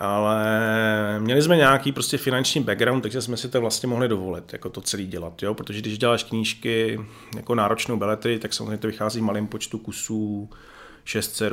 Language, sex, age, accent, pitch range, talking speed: Czech, male, 30-49, native, 105-125 Hz, 180 wpm